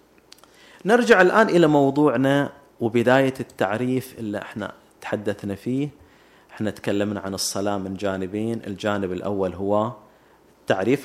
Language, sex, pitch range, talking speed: Arabic, male, 105-140 Hz, 110 wpm